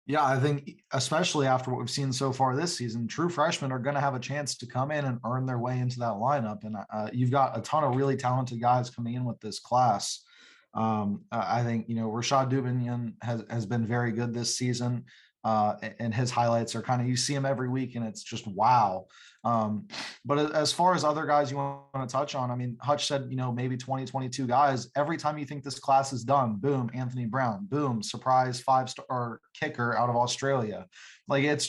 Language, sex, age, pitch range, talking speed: English, male, 20-39, 120-140 Hz, 220 wpm